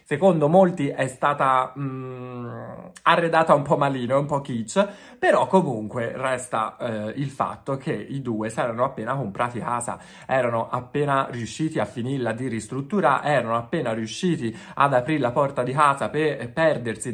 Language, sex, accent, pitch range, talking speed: Italian, male, native, 115-180 Hz, 155 wpm